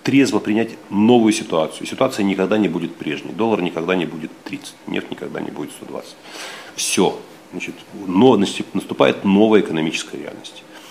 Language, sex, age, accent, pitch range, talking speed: Russian, male, 40-59, native, 90-105 Hz, 140 wpm